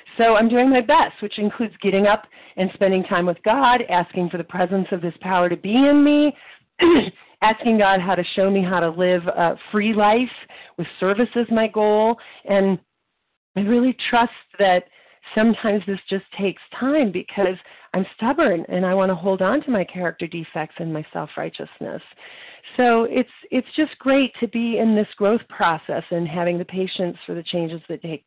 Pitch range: 180-235 Hz